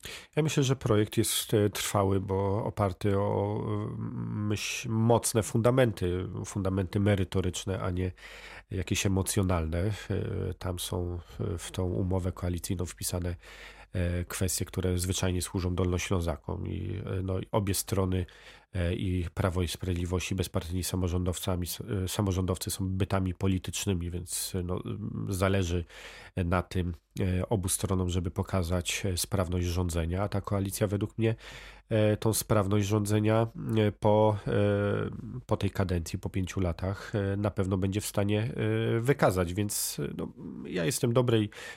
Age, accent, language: 40-59, native, Polish